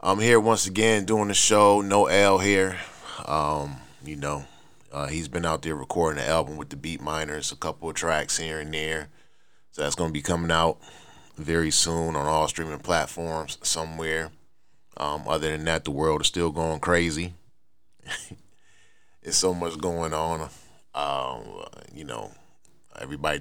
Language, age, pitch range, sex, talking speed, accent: English, 30-49, 75-85 Hz, male, 165 wpm, American